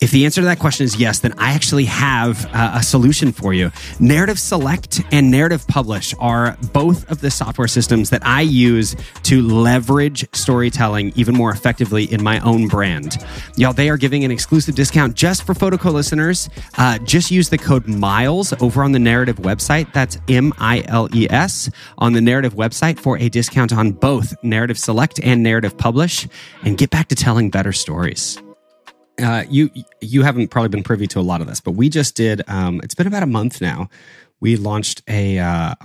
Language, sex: English, male